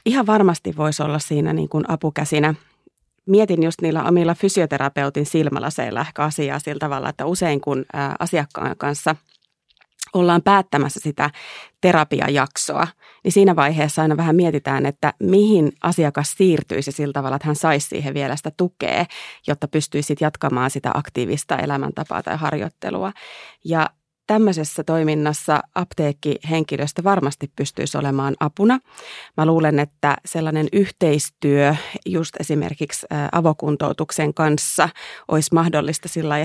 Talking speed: 125 wpm